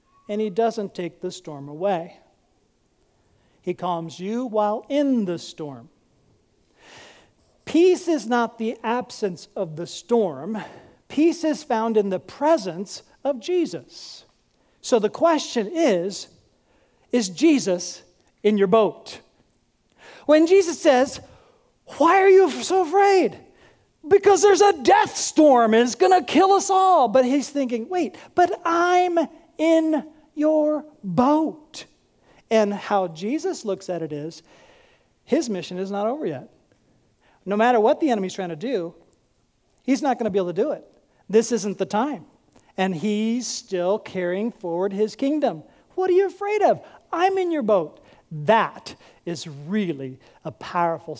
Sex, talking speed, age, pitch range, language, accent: male, 145 wpm, 50-69, 190-315 Hz, English, American